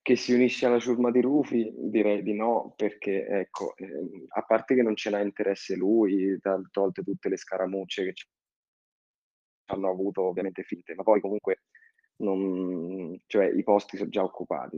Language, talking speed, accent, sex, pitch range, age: Italian, 165 wpm, native, male, 95-110 Hz, 20-39